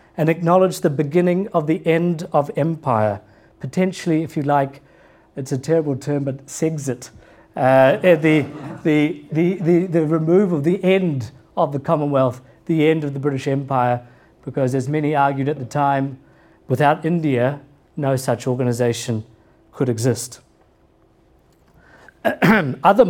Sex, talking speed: male, 140 wpm